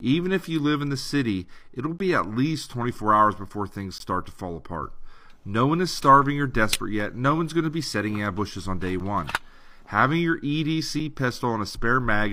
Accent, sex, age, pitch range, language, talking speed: American, male, 40-59, 95-130 Hz, English, 215 wpm